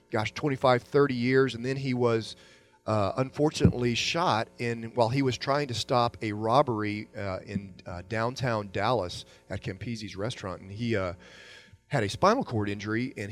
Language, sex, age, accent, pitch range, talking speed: English, male, 40-59, American, 110-135 Hz, 160 wpm